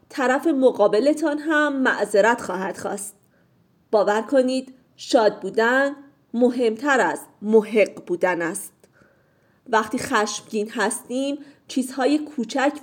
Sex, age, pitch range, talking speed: female, 40-59, 210-280 Hz, 95 wpm